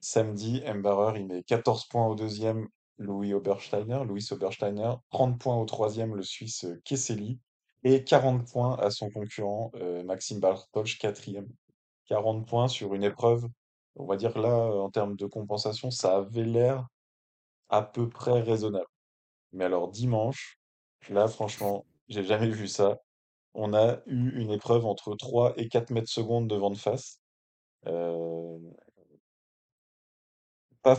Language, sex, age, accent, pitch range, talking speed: French, male, 20-39, French, 100-120 Hz, 145 wpm